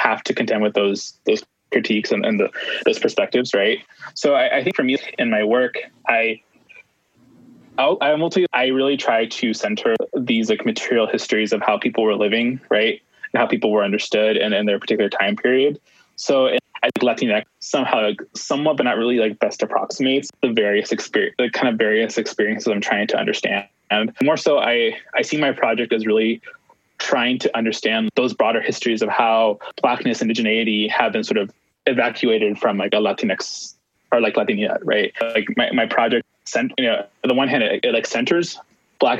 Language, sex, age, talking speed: English, male, 20-39, 195 wpm